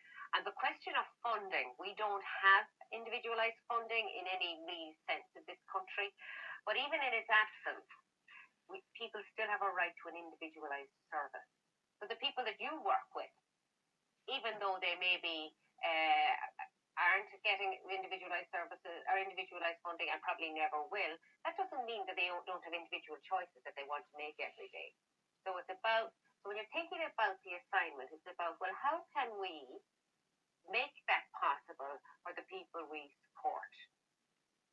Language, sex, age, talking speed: English, female, 30-49, 160 wpm